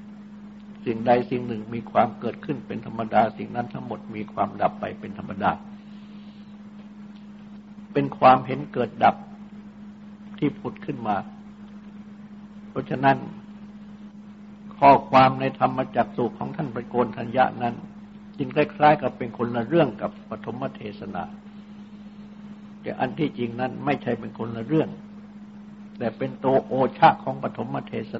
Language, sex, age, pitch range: Thai, male, 60-79, 205-210 Hz